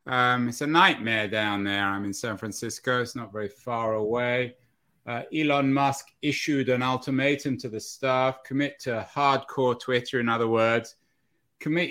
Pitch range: 115-135 Hz